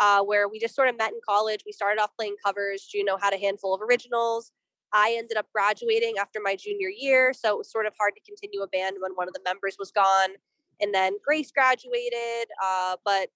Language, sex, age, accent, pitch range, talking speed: English, female, 20-39, American, 200-250 Hz, 230 wpm